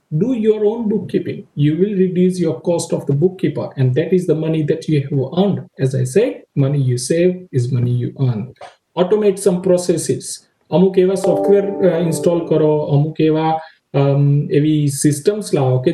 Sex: male